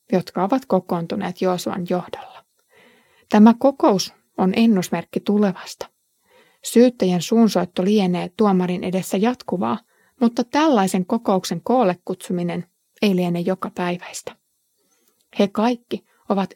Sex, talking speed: female, 100 wpm